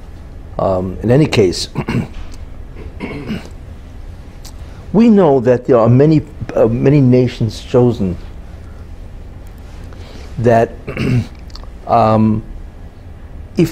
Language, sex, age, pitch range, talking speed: English, male, 60-79, 90-125 Hz, 75 wpm